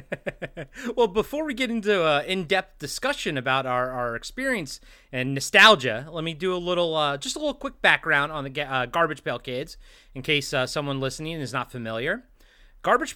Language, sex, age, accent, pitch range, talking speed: English, male, 30-49, American, 135-225 Hz, 185 wpm